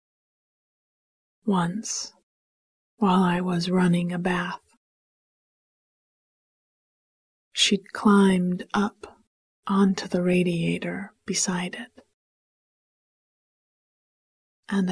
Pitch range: 180-205 Hz